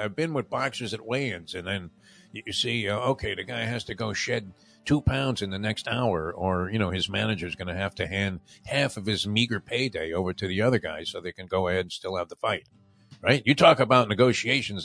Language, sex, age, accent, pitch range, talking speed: English, male, 50-69, American, 100-135 Hz, 240 wpm